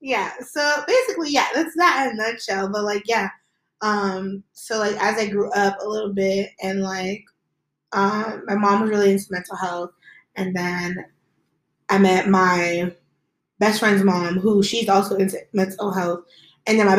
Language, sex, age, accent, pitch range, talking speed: English, female, 20-39, American, 190-215 Hz, 175 wpm